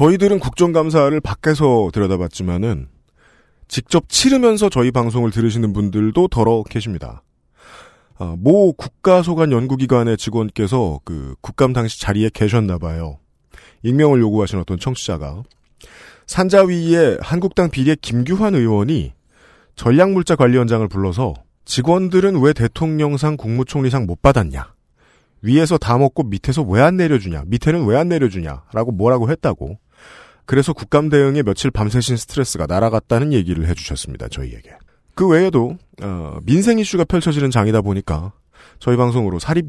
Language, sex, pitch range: Korean, male, 100-155 Hz